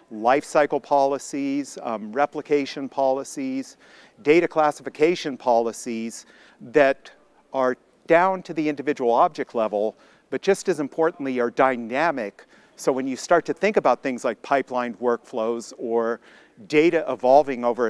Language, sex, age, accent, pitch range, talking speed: English, male, 50-69, American, 125-155 Hz, 125 wpm